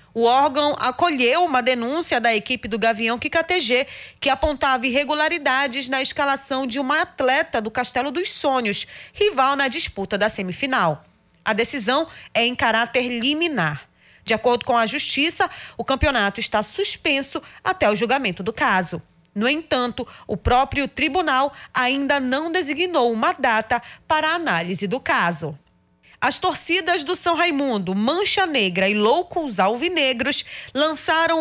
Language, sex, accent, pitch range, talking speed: Portuguese, female, Brazilian, 235-300 Hz, 140 wpm